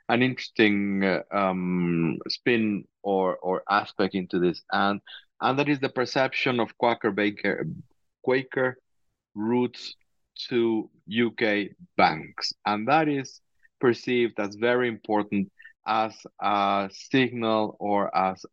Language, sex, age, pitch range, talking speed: English, male, 40-59, 100-125 Hz, 115 wpm